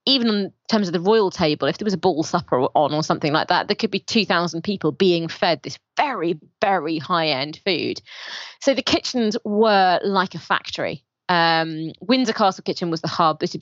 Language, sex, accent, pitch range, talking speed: English, female, British, 160-195 Hz, 205 wpm